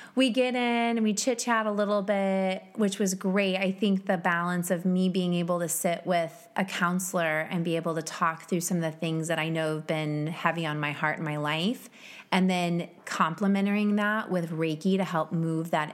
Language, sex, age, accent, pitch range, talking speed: English, female, 30-49, American, 165-205 Hz, 215 wpm